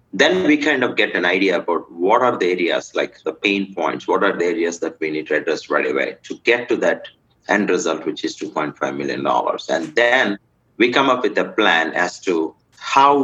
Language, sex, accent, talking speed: English, male, Indian, 220 wpm